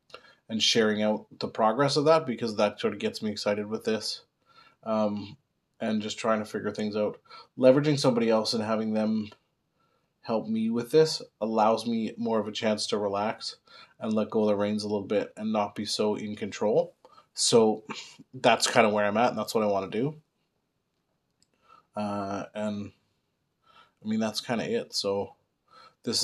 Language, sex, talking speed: English, male, 185 wpm